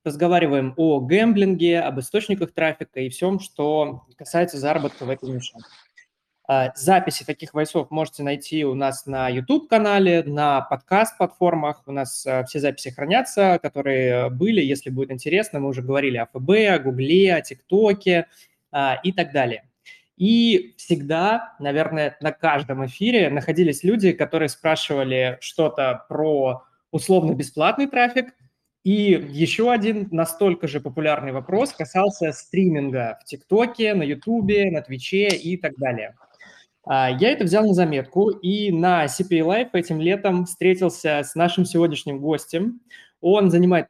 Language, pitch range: Russian, 140-185 Hz